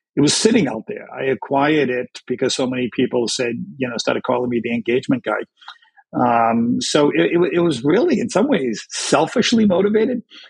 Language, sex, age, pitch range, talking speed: English, male, 50-69, 125-155 Hz, 190 wpm